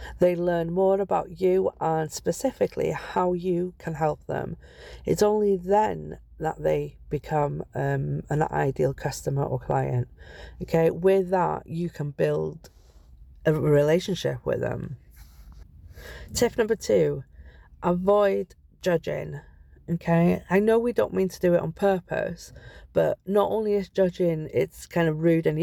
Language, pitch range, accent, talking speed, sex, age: English, 130-190 Hz, British, 140 wpm, female, 40-59